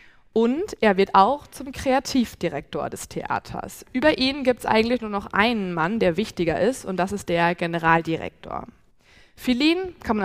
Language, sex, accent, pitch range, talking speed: German, female, German, 185-250 Hz, 165 wpm